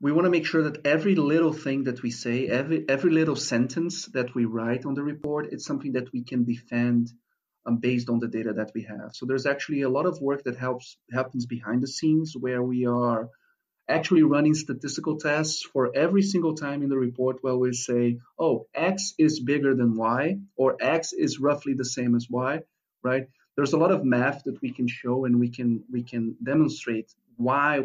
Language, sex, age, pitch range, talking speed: English, male, 40-59, 120-150 Hz, 210 wpm